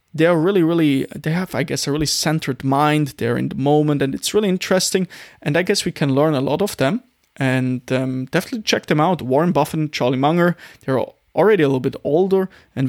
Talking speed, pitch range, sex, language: 215 wpm, 135-190 Hz, male, English